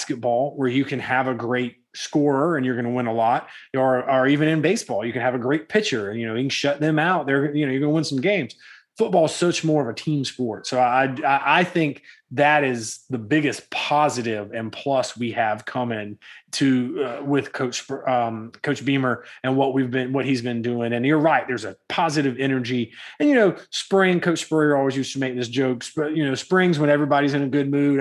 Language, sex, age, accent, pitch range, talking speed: English, male, 30-49, American, 125-155 Hz, 235 wpm